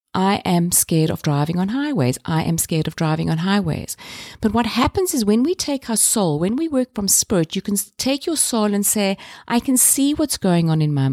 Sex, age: female, 50-69